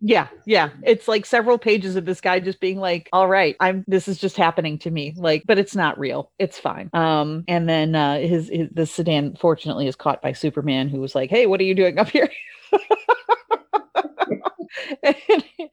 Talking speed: 200 wpm